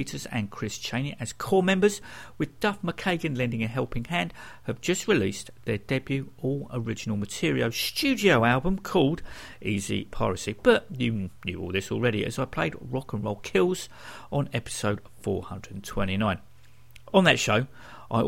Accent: British